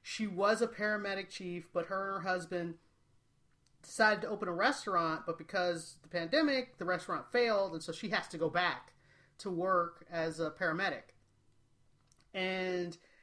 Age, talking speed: 30-49, 165 wpm